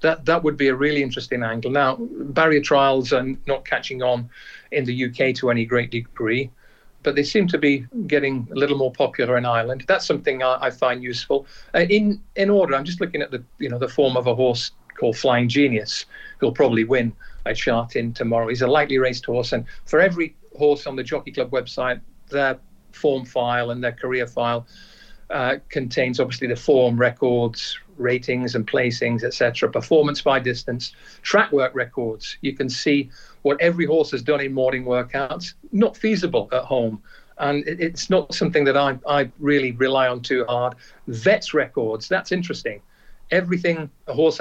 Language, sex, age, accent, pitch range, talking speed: English, male, 50-69, British, 125-150 Hz, 185 wpm